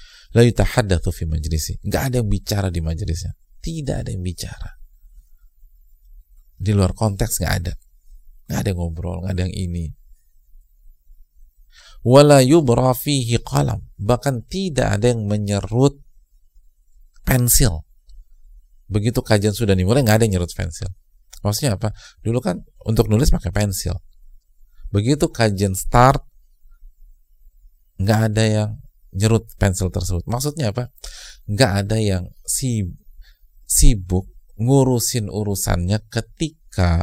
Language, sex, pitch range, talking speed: Indonesian, male, 80-115 Hz, 115 wpm